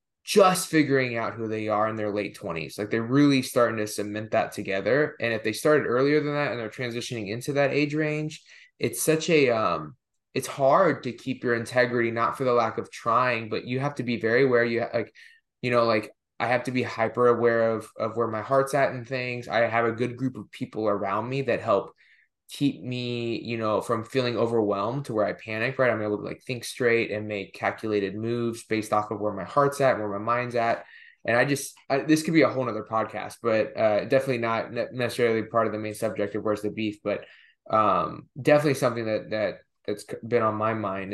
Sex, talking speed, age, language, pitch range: male, 225 wpm, 20-39, English, 110-130 Hz